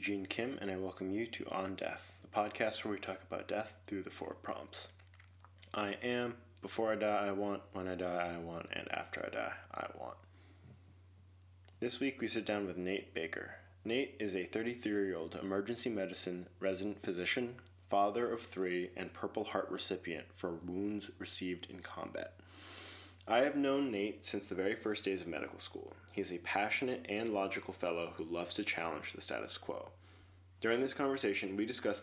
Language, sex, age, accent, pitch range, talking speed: English, male, 20-39, American, 90-105 Hz, 180 wpm